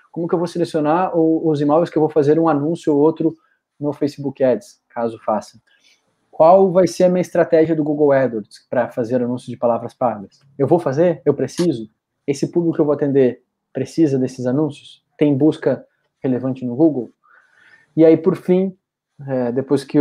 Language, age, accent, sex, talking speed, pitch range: Portuguese, 20-39, Brazilian, male, 185 wpm, 135-160 Hz